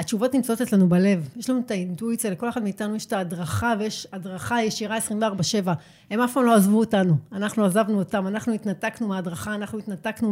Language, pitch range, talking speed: Hebrew, 190-235 Hz, 185 wpm